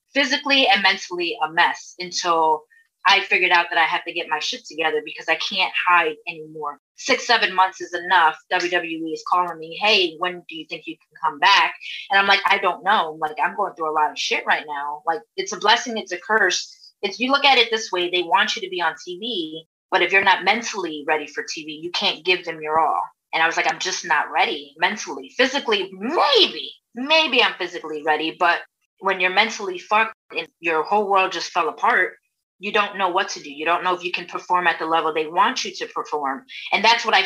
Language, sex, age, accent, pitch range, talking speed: English, female, 30-49, American, 165-215 Hz, 230 wpm